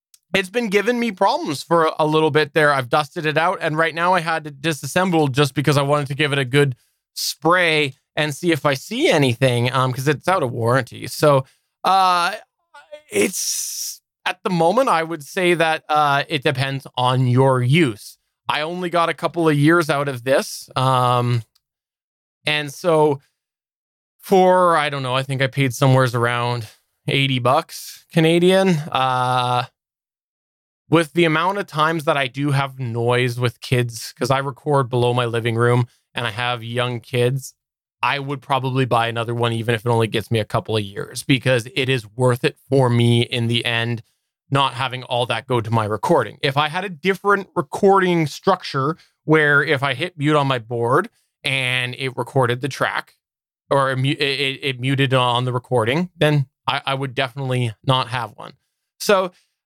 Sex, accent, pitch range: male, American, 125-160 Hz